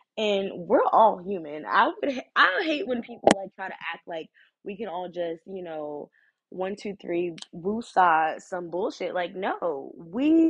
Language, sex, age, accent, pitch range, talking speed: English, female, 20-39, American, 165-205 Hz, 170 wpm